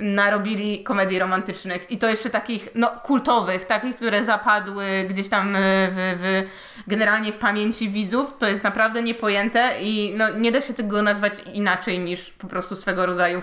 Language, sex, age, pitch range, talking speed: Polish, female, 20-39, 195-235 Hz, 150 wpm